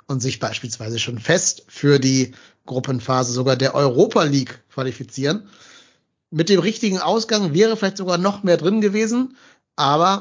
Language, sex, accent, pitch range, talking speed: German, male, German, 130-170 Hz, 145 wpm